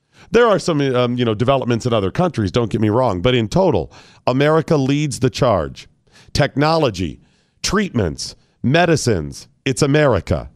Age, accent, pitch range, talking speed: 40-59, American, 115-150 Hz, 150 wpm